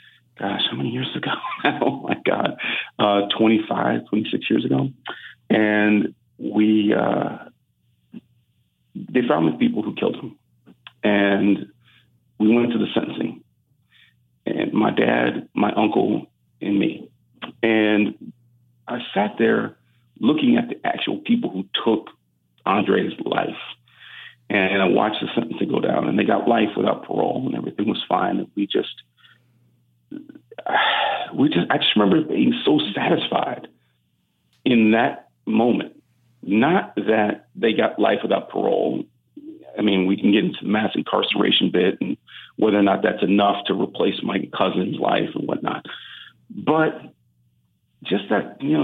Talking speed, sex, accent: 140 wpm, male, American